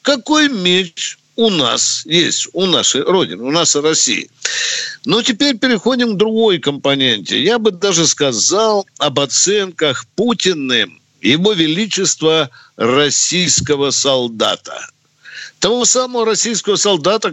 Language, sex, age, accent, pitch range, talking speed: Russian, male, 50-69, native, 140-200 Hz, 115 wpm